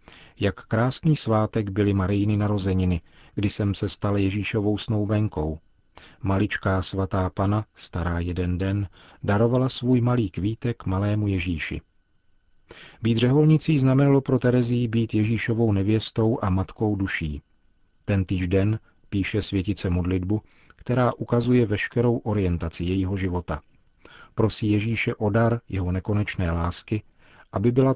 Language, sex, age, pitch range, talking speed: Czech, male, 40-59, 95-115 Hz, 120 wpm